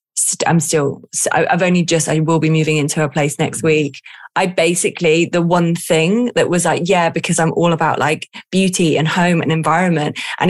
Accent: British